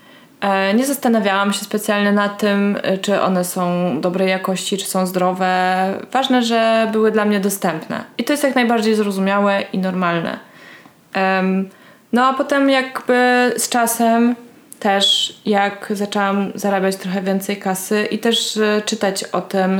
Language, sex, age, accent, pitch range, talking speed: Polish, female, 20-39, native, 180-210 Hz, 140 wpm